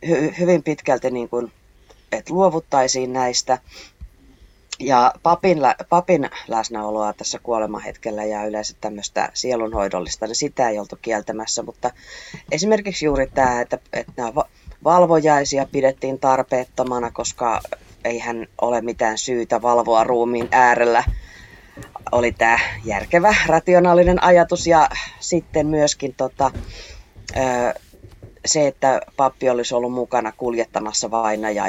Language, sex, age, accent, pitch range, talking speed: Finnish, female, 30-49, native, 110-150 Hz, 110 wpm